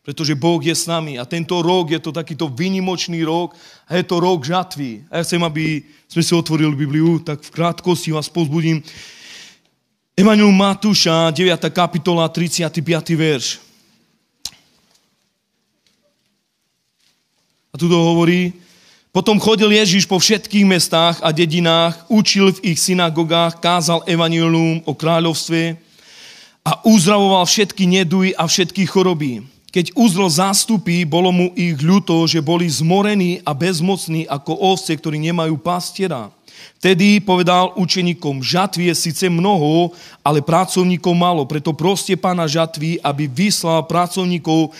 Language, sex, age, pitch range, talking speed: Slovak, male, 30-49, 160-185 Hz, 130 wpm